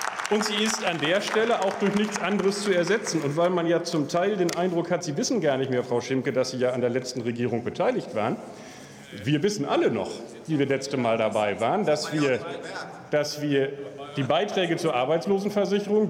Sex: male